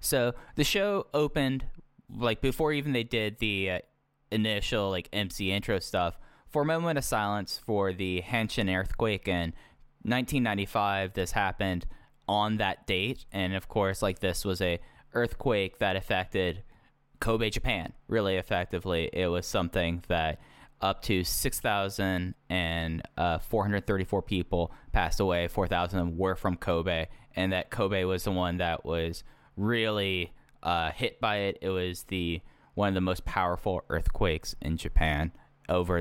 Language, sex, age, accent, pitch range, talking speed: English, male, 10-29, American, 90-115 Hz, 150 wpm